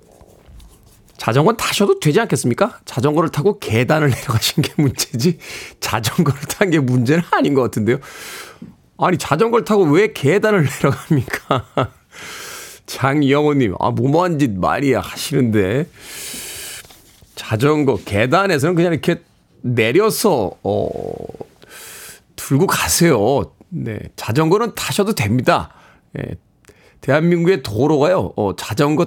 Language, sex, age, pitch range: Korean, male, 40-59, 125-180 Hz